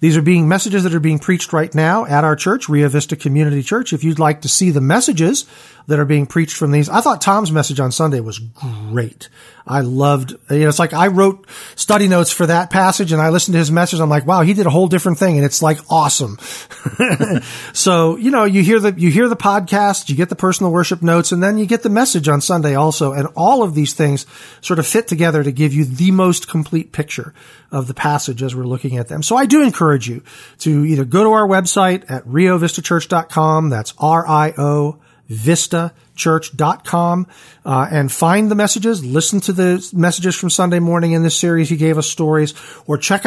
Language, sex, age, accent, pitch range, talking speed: English, male, 40-59, American, 150-185 Hz, 215 wpm